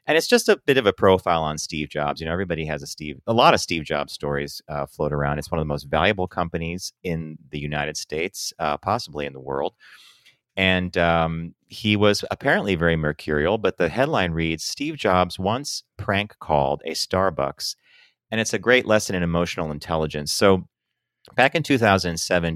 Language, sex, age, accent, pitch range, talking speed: English, male, 30-49, American, 75-95 Hz, 190 wpm